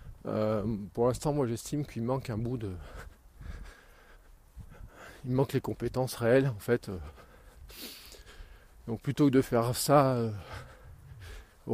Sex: male